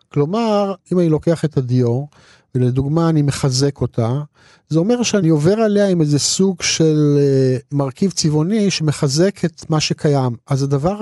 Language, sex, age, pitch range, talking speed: Hebrew, male, 50-69, 135-175 Hz, 145 wpm